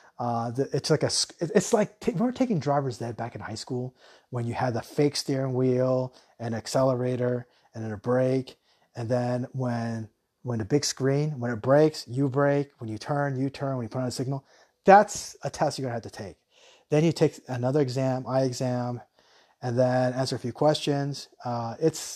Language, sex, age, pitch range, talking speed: English, male, 30-49, 120-145 Hz, 200 wpm